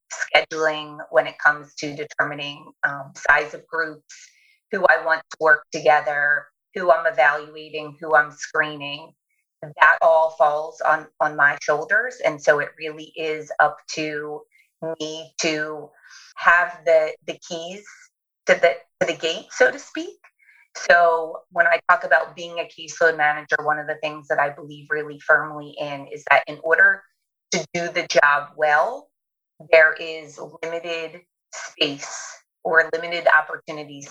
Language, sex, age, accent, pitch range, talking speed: English, female, 30-49, American, 150-175 Hz, 150 wpm